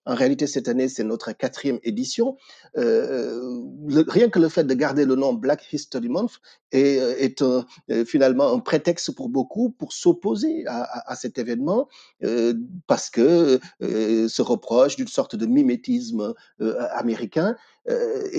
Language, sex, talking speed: French, male, 165 wpm